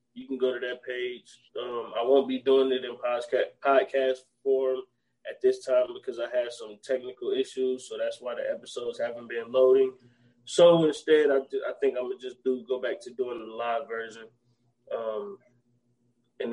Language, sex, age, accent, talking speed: English, male, 20-39, American, 190 wpm